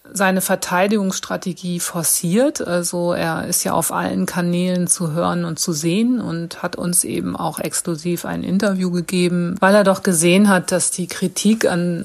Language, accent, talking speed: German, German, 165 wpm